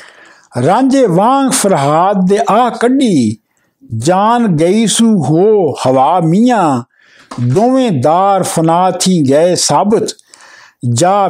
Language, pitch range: Punjabi, 155-220 Hz